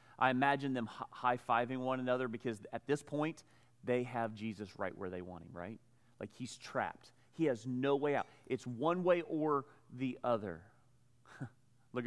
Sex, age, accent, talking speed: male, 40-59, American, 170 wpm